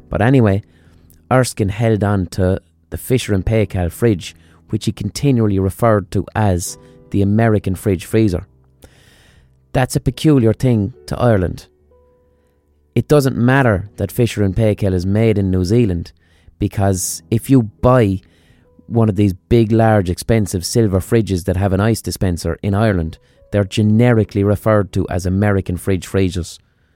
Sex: male